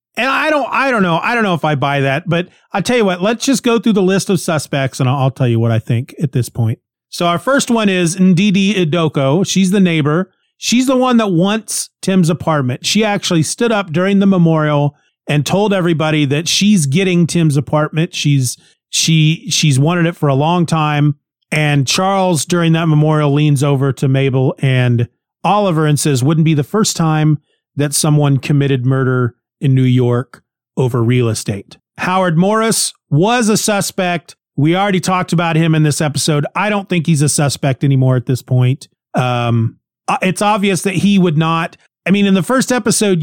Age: 40-59